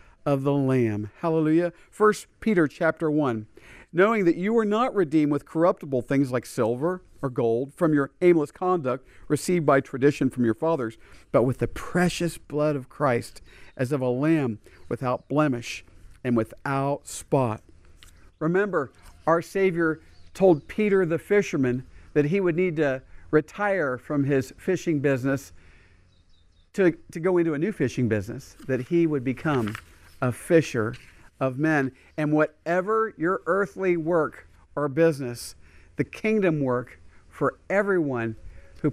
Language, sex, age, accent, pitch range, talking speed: English, male, 50-69, American, 115-170 Hz, 145 wpm